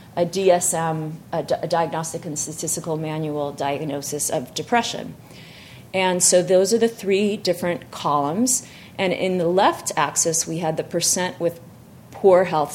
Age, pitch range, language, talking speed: 30-49, 155-185 Hz, English, 140 wpm